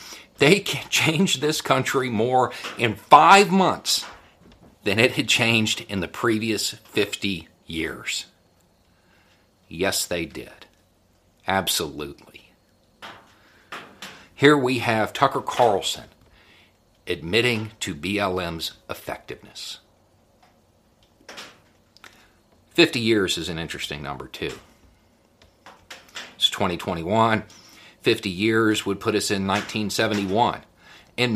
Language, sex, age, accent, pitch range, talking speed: English, male, 50-69, American, 95-115 Hz, 90 wpm